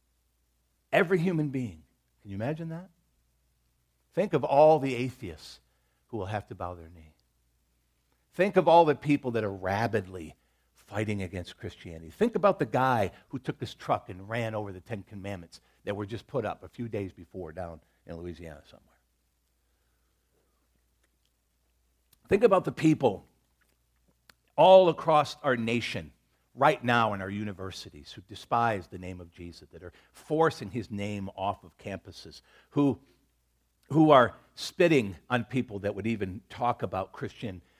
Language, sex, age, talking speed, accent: English, male, 50-69, 150 wpm, American